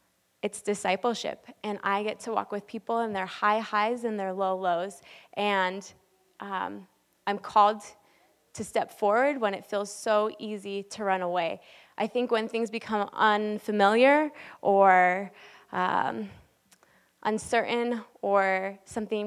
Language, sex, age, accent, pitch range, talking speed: English, female, 20-39, American, 190-215 Hz, 135 wpm